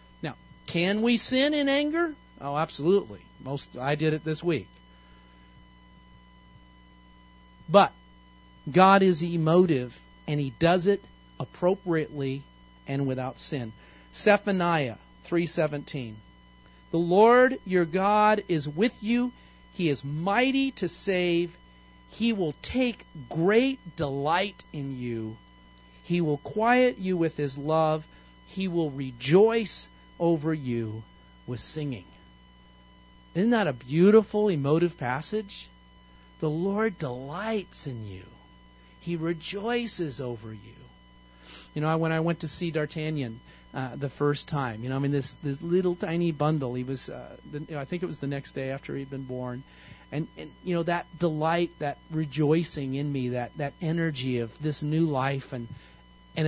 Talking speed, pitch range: 135 wpm, 115-175 Hz